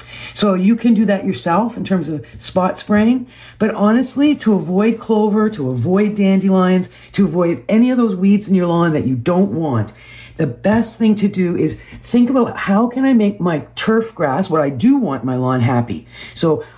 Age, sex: 50-69, female